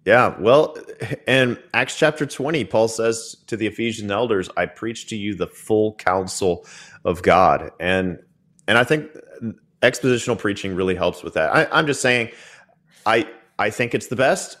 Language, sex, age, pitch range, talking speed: English, male, 30-49, 100-125 Hz, 170 wpm